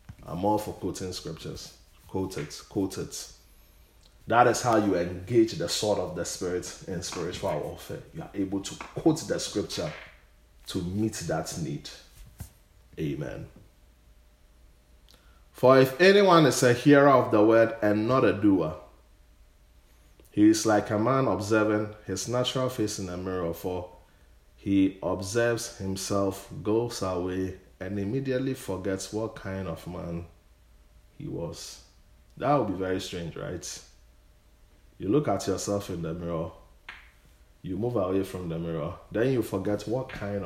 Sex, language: male, English